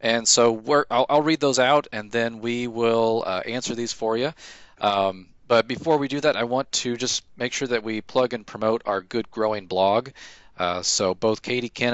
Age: 40-59